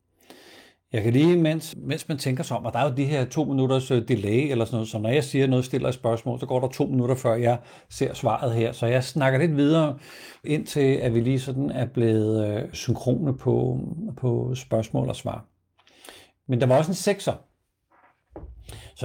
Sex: male